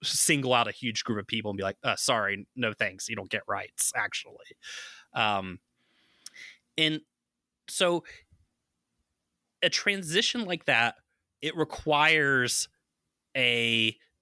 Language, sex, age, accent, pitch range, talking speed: English, male, 20-39, American, 105-150 Hz, 120 wpm